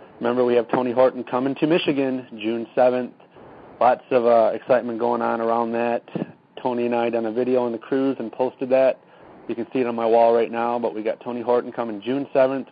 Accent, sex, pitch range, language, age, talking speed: American, male, 115-130 Hz, English, 30-49, 220 wpm